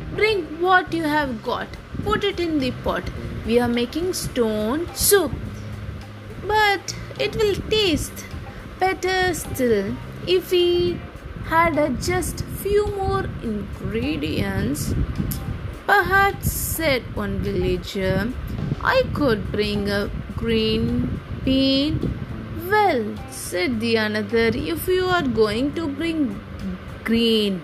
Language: Tamil